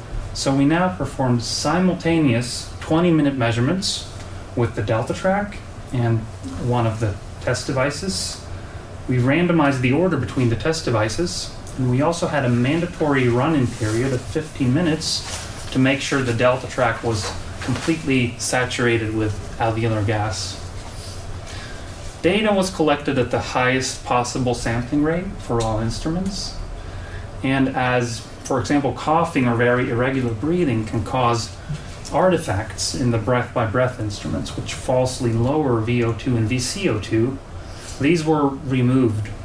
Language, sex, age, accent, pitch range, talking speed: English, male, 30-49, American, 105-135 Hz, 130 wpm